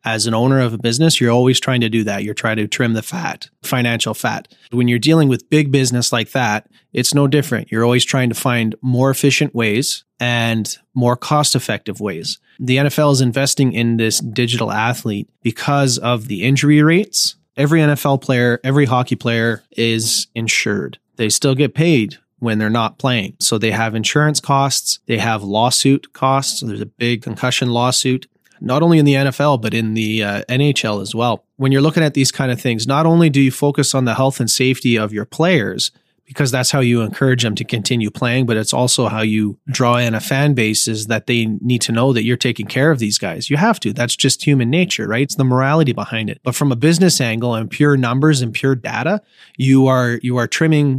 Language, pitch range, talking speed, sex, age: English, 115-140 Hz, 210 wpm, male, 30-49